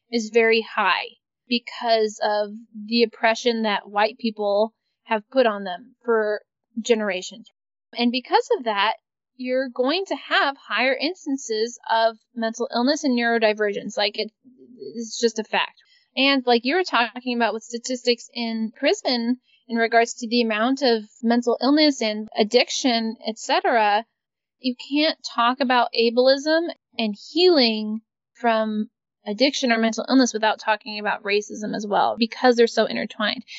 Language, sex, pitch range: English, female, 220-250 Hz